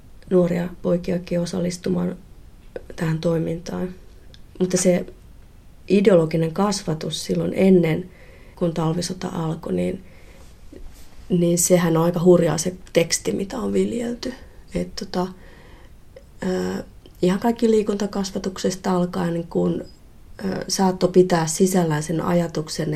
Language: Finnish